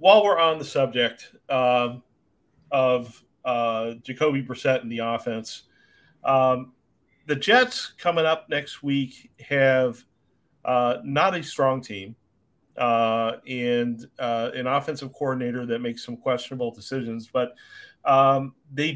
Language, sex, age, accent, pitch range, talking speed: English, male, 40-59, American, 120-150 Hz, 125 wpm